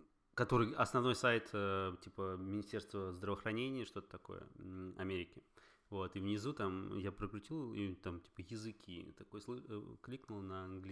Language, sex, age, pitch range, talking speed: Russian, male, 20-39, 95-110 Hz, 120 wpm